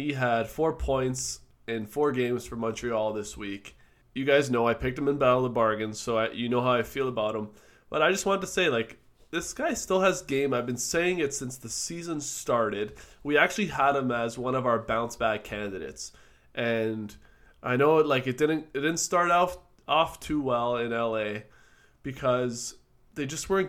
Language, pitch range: English, 115-160 Hz